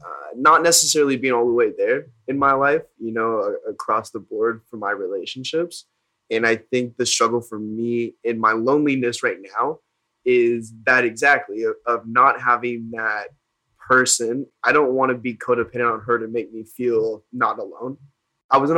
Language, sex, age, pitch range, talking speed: English, male, 10-29, 115-155 Hz, 185 wpm